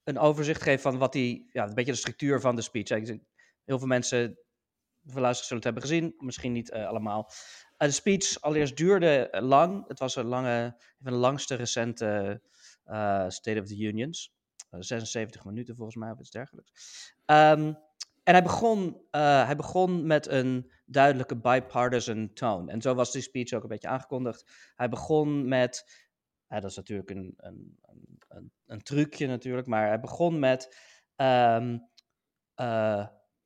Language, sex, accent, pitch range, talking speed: Dutch, male, Dutch, 115-140 Hz, 165 wpm